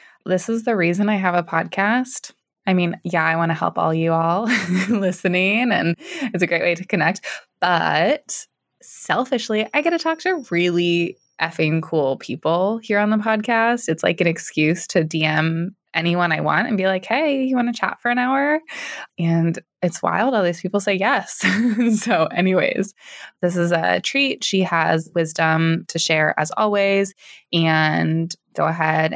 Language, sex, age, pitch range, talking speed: English, female, 20-39, 165-210 Hz, 175 wpm